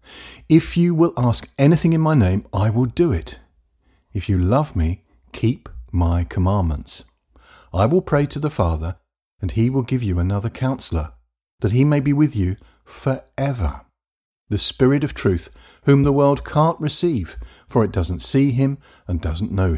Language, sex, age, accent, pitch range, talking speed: English, male, 50-69, British, 80-125 Hz, 170 wpm